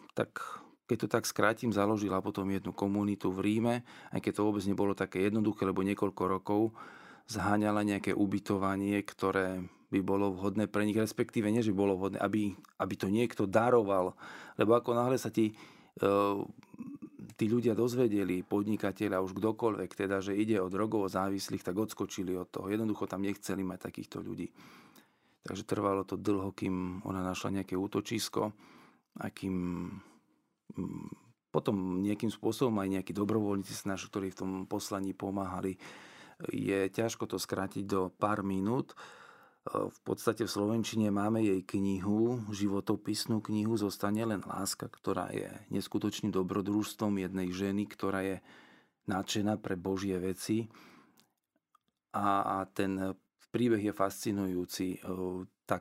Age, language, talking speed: 40-59, Slovak, 135 wpm